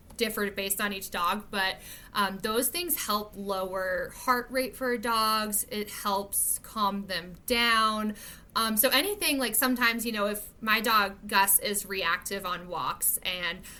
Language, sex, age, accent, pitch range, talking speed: English, female, 20-39, American, 200-240 Hz, 155 wpm